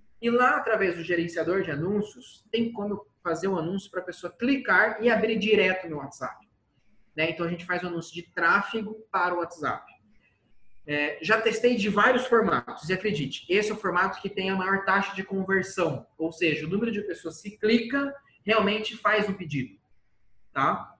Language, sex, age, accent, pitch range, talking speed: Portuguese, male, 20-39, Brazilian, 165-225 Hz, 195 wpm